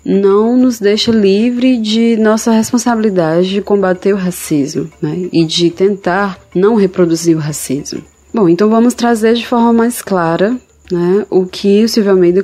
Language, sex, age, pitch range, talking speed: Portuguese, female, 20-39, 175-225 Hz, 160 wpm